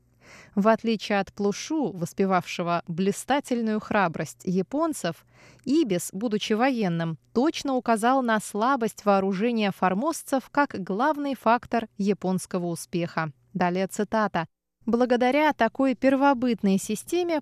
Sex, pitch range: female, 185-255 Hz